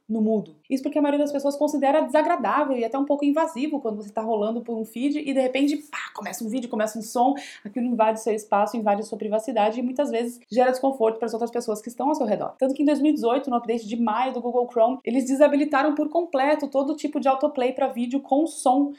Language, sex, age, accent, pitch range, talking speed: Portuguese, female, 20-39, Brazilian, 230-295 Hz, 245 wpm